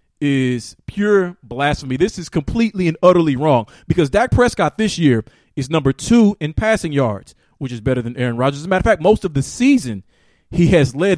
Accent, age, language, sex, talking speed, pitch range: American, 40-59, English, male, 205 wpm, 135-180 Hz